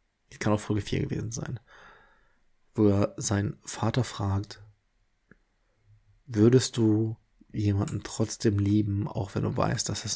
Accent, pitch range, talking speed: German, 105-120 Hz, 135 wpm